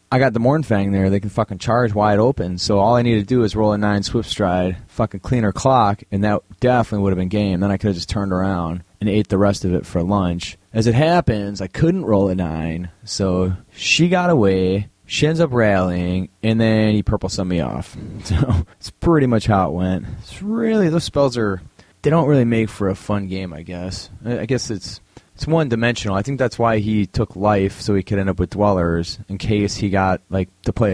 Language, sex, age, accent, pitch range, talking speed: English, male, 30-49, American, 95-115 Hz, 235 wpm